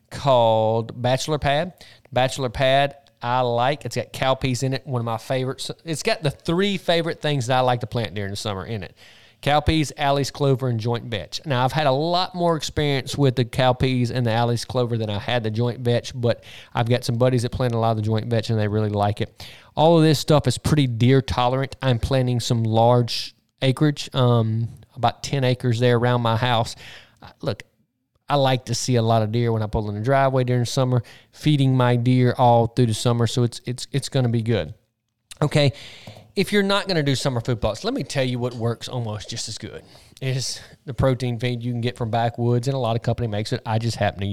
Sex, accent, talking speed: male, American, 235 wpm